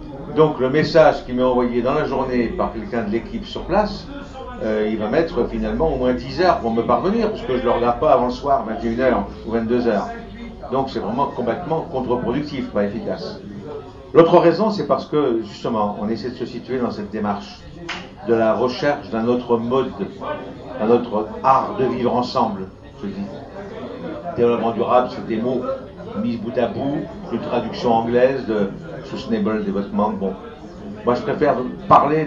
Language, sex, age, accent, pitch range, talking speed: French, male, 60-79, French, 115-155 Hz, 175 wpm